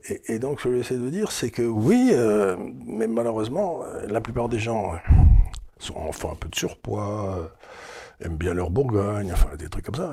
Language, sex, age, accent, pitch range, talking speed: French, male, 60-79, French, 90-115 Hz, 230 wpm